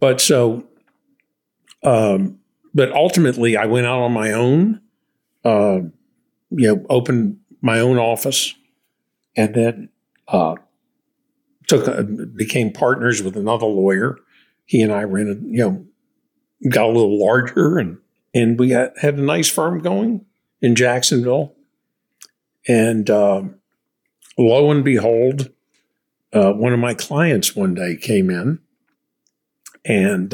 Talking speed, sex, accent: 125 wpm, male, American